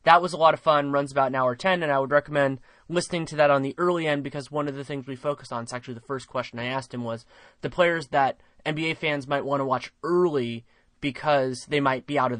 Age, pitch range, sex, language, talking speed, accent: 20-39, 125-150 Hz, male, English, 265 wpm, American